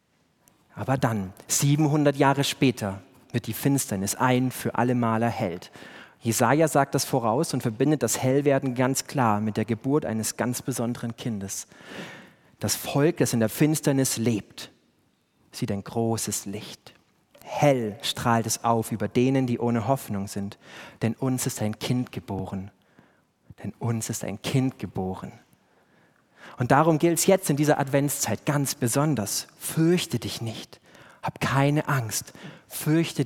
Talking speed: 145 wpm